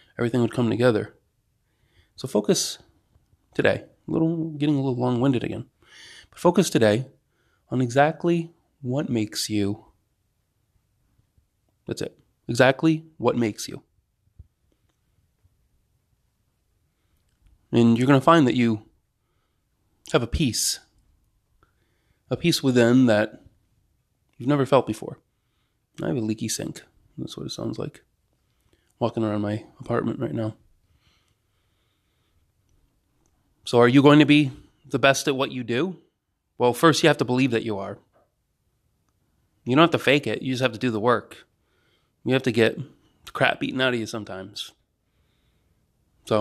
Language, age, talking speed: English, 30-49, 140 wpm